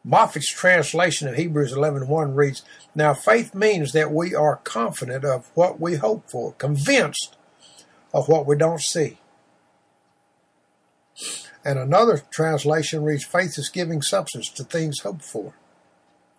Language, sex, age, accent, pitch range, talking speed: English, male, 60-79, American, 140-170 Hz, 135 wpm